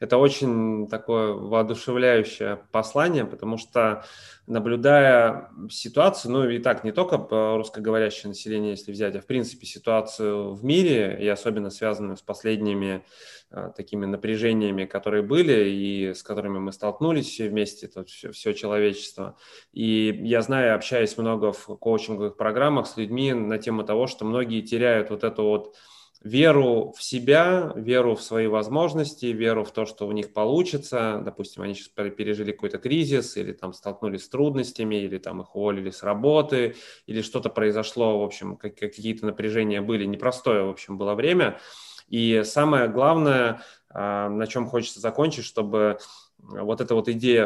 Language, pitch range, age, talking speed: Russian, 105-125 Hz, 20-39, 150 wpm